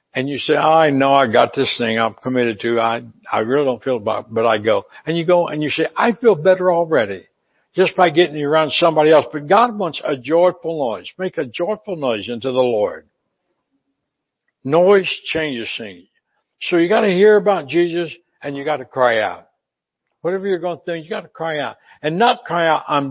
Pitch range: 150-195 Hz